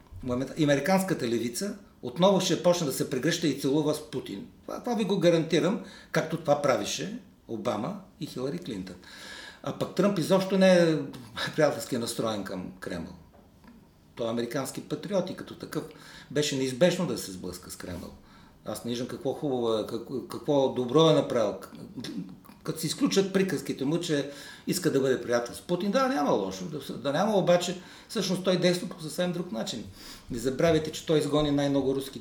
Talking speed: 165 wpm